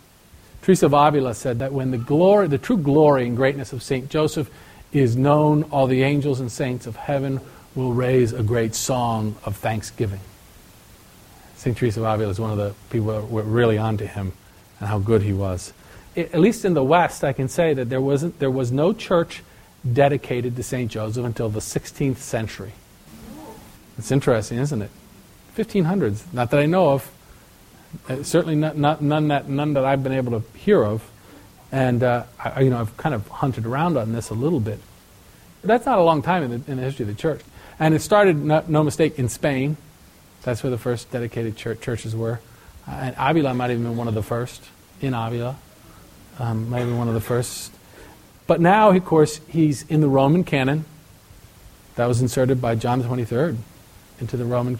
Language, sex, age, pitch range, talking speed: English, male, 40-59, 115-145 Hz, 185 wpm